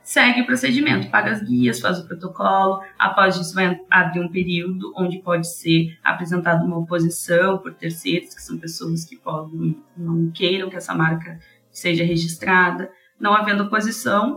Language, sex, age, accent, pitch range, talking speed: Portuguese, female, 20-39, Brazilian, 170-220 Hz, 155 wpm